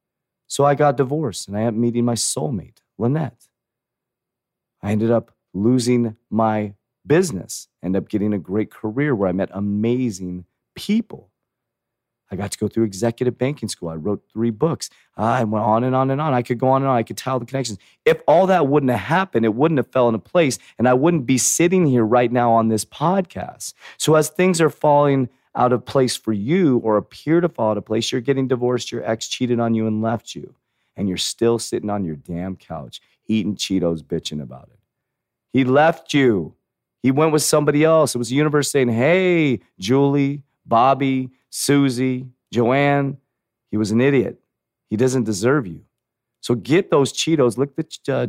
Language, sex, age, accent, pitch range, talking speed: English, male, 30-49, American, 110-140 Hz, 195 wpm